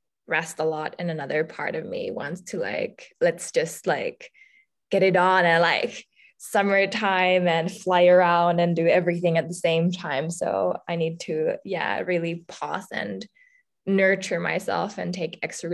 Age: 20-39